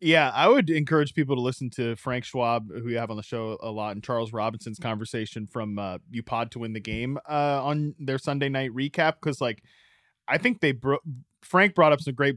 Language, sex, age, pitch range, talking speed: English, male, 20-39, 115-155 Hz, 230 wpm